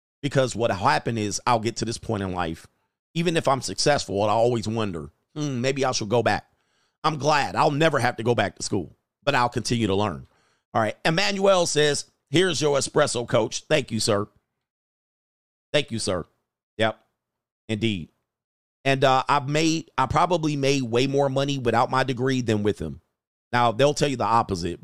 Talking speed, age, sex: 190 wpm, 40-59, male